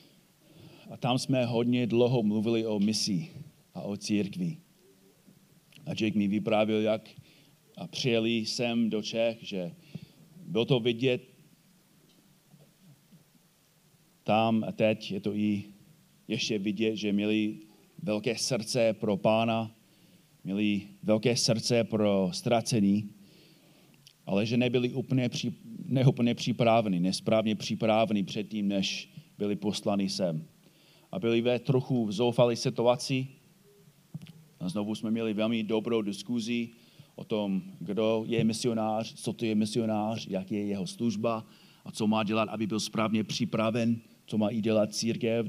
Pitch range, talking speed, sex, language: 110-155 Hz, 130 wpm, male, Czech